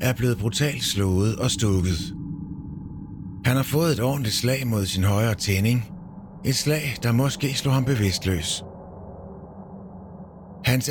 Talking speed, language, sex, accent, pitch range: 130 wpm, Danish, male, native, 105-130 Hz